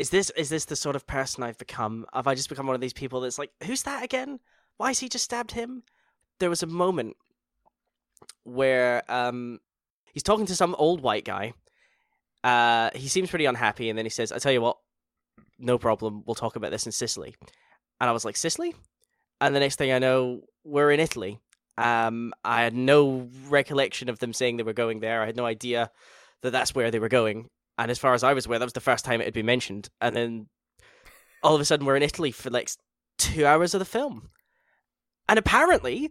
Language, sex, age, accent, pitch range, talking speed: English, male, 10-29, British, 120-195 Hz, 220 wpm